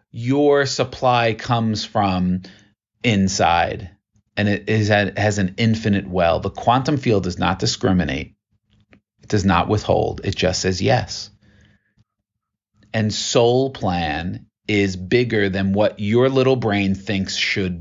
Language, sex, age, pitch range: English, male, 30-49, 95-110 Hz